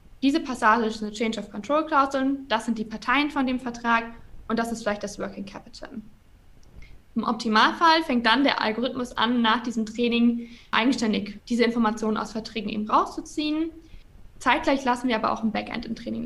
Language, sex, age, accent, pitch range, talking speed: German, female, 20-39, German, 225-275 Hz, 175 wpm